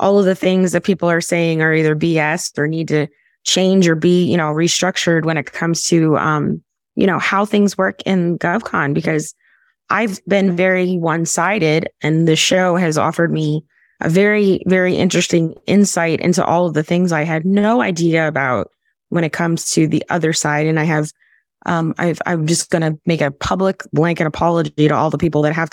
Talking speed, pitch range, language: 200 wpm, 155-185 Hz, English